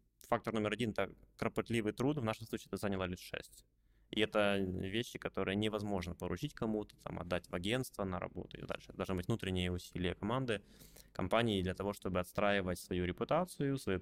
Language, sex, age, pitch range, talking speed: Ukrainian, male, 20-39, 95-120 Hz, 180 wpm